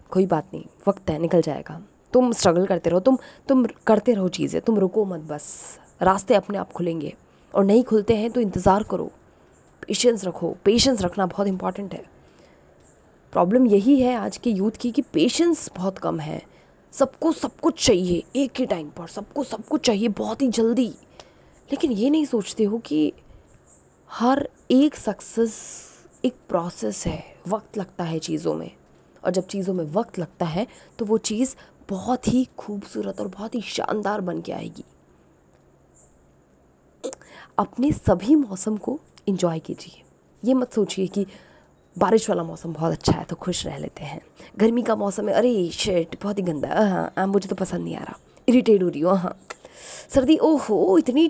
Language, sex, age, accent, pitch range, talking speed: Hindi, female, 20-39, native, 180-250 Hz, 170 wpm